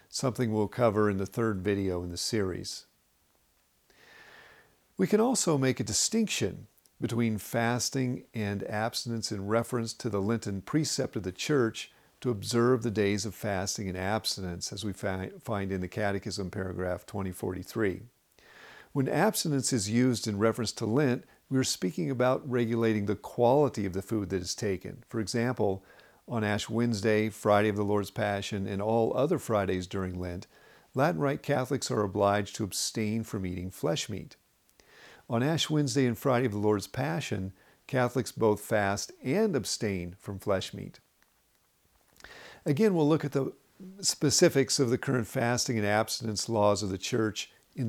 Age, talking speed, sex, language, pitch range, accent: 50-69, 160 wpm, male, English, 100-130 Hz, American